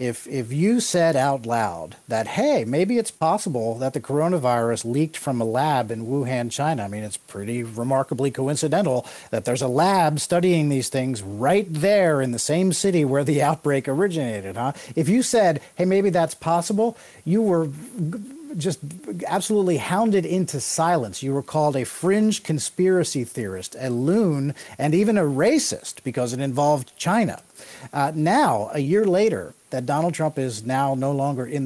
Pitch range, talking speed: 130-180 Hz, 170 wpm